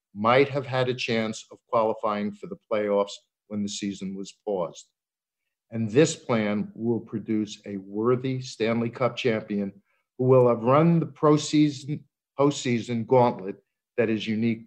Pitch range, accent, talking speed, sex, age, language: 110-140 Hz, American, 150 wpm, male, 50-69, English